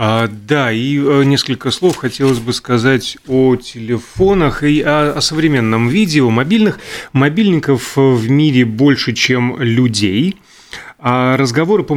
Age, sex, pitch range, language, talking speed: 30-49, male, 115-145 Hz, Russian, 125 wpm